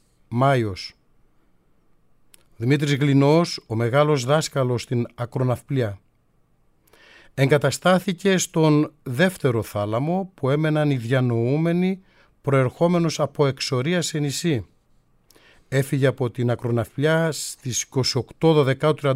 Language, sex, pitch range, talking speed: Greek, male, 120-160 Hz, 85 wpm